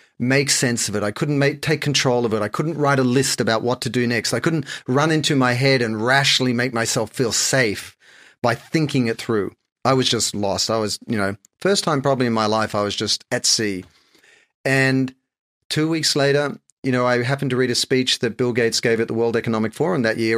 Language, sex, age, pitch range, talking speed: English, male, 40-59, 115-145 Hz, 230 wpm